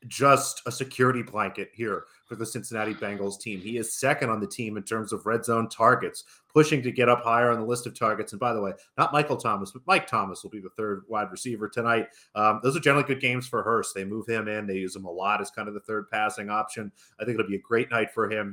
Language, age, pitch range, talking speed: English, 30-49, 105-125 Hz, 265 wpm